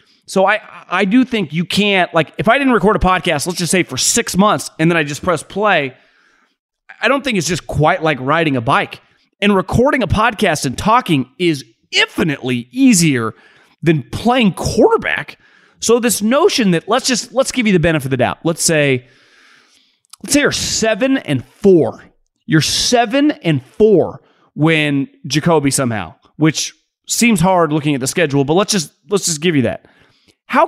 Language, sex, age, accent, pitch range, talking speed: English, male, 30-49, American, 145-215 Hz, 180 wpm